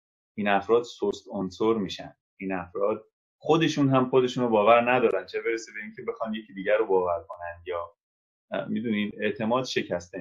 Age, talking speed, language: 30-49, 160 wpm, Persian